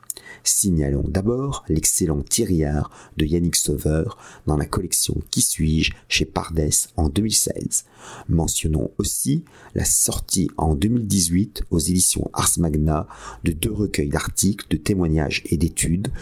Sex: male